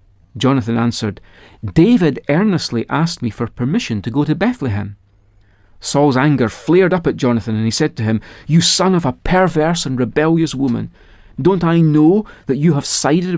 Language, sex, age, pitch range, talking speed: English, male, 40-59, 110-155 Hz, 170 wpm